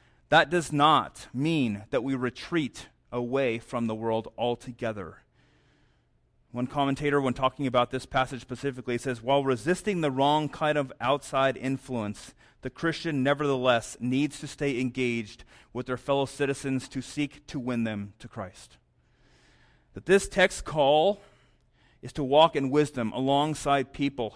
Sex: male